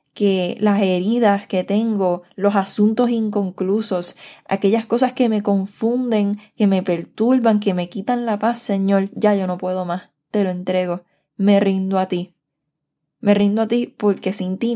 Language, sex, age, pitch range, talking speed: Spanish, female, 10-29, 175-220 Hz, 165 wpm